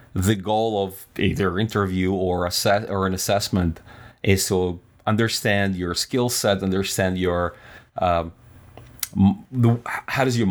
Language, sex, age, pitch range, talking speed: English, male, 30-49, 95-110 Hz, 135 wpm